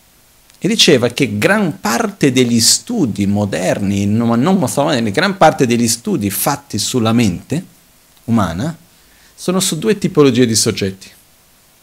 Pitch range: 105-155 Hz